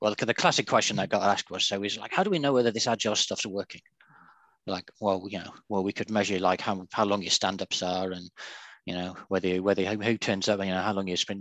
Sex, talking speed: male, 270 wpm